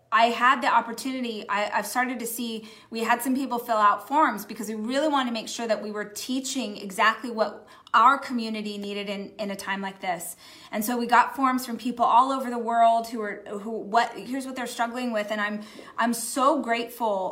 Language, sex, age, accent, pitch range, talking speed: English, female, 20-39, American, 210-250 Hz, 220 wpm